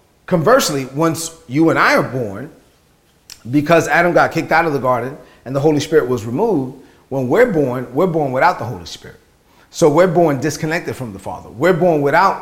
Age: 40-59